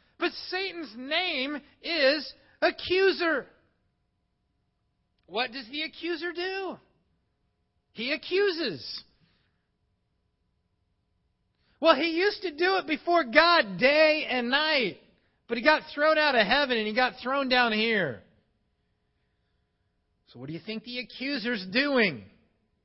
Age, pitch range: 40-59, 185-280 Hz